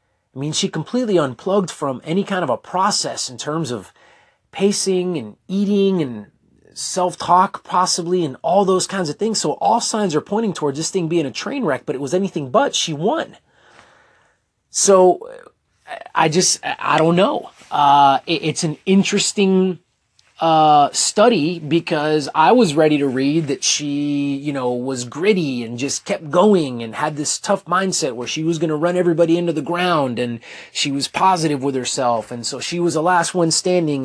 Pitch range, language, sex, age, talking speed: 135-180 Hz, English, male, 30-49, 180 wpm